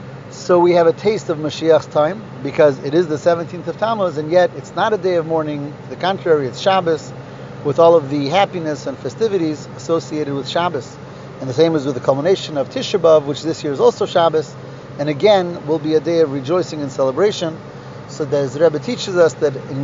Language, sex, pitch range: English, male, 145-175 Hz